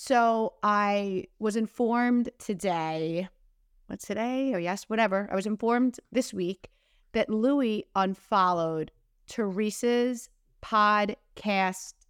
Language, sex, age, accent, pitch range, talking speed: English, female, 30-49, American, 185-235 Hz, 100 wpm